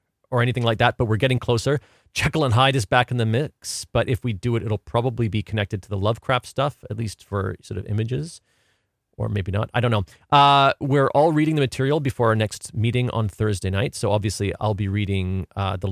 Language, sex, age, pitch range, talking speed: English, male, 40-59, 100-125 Hz, 230 wpm